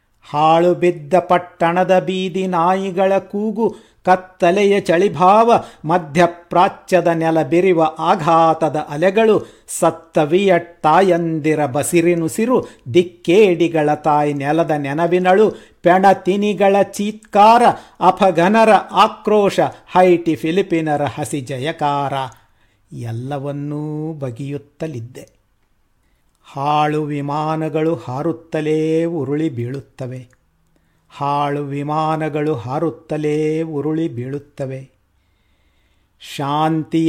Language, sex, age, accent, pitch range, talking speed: Kannada, male, 50-69, native, 135-175 Hz, 65 wpm